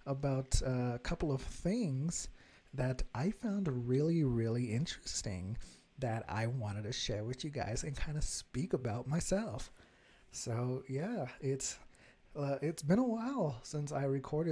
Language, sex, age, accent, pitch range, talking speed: English, male, 30-49, American, 120-145 Hz, 150 wpm